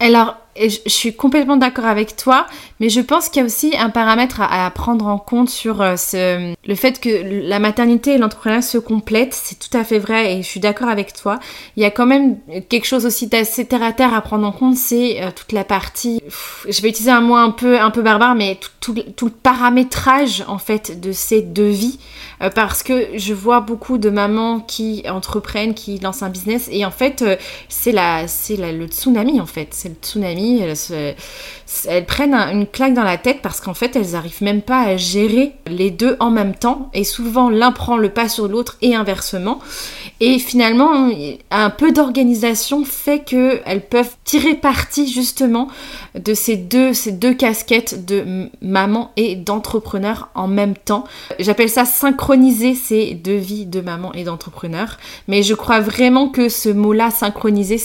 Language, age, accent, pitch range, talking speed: French, 20-39, French, 200-245 Hz, 195 wpm